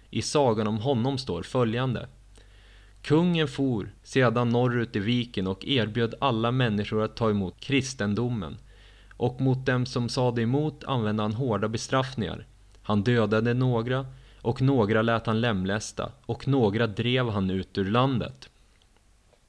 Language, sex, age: Swedish, male, 20-39